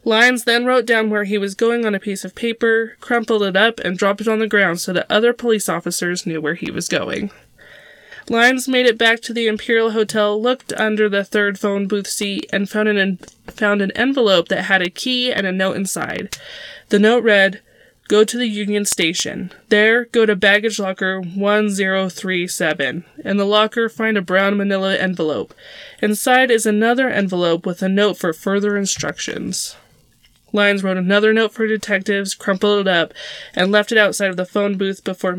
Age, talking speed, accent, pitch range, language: 20-39, 185 wpm, American, 190-220 Hz, English